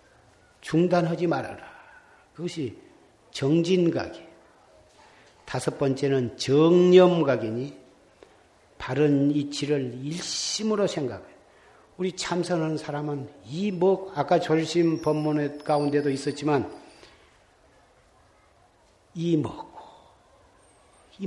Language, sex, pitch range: Korean, male, 140-185 Hz